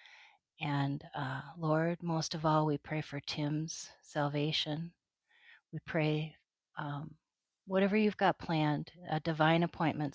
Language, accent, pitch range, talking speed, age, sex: English, American, 140-165 Hz, 125 wpm, 40-59, female